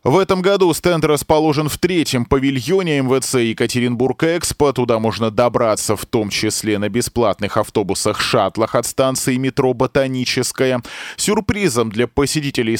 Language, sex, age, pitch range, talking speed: Russian, male, 20-39, 110-130 Hz, 120 wpm